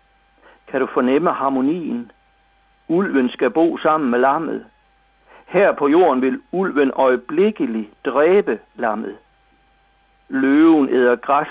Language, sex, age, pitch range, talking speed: Danish, male, 60-79, 130-170 Hz, 110 wpm